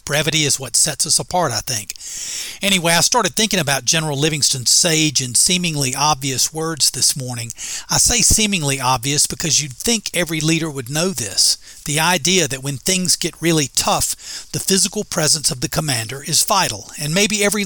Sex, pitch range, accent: male, 140-180 Hz, American